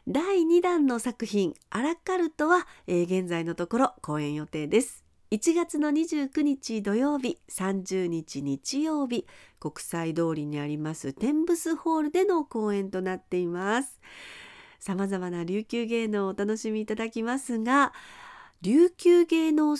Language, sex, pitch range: Japanese, female, 185-300 Hz